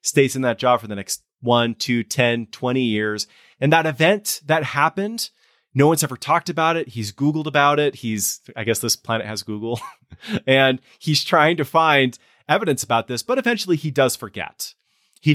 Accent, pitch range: American, 110-145 Hz